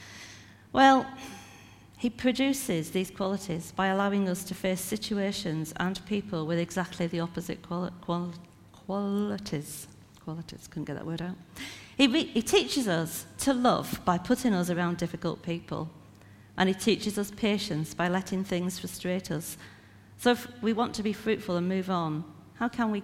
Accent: British